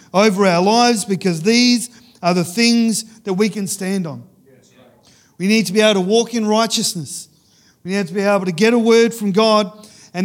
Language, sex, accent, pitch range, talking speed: English, male, Australian, 170-220 Hz, 200 wpm